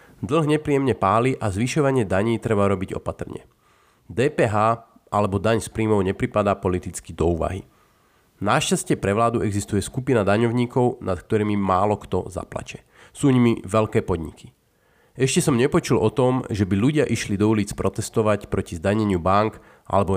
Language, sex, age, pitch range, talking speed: Slovak, male, 30-49, 105-130 Hz, 145 wpm